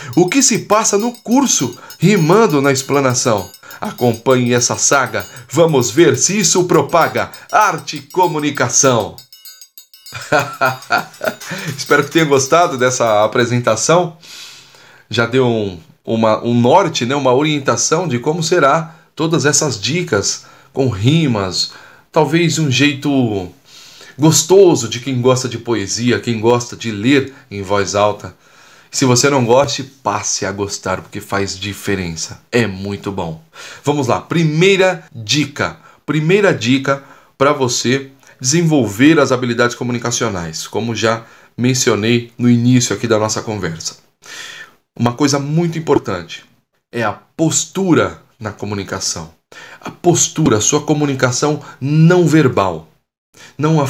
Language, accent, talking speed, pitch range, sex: Portuguese, Brazilian, 120 wpm, 115-155 Hz, male